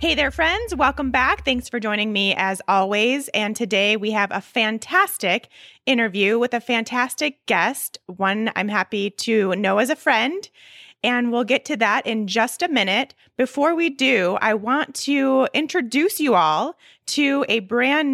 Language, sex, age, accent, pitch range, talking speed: English, female, 20-39, American, 205-265 Hz, 170 wpm